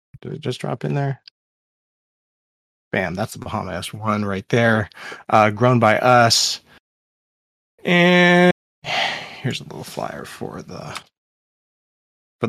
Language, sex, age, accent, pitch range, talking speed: English, male, 30-49, American, 110-140 Hz, 120 wpm